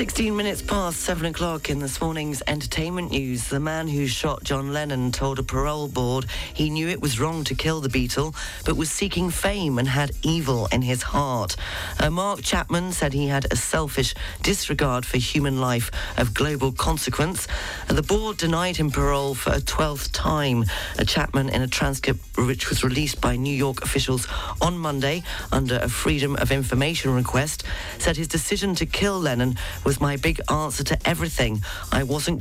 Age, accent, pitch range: 40-59, British, 120-150 Hz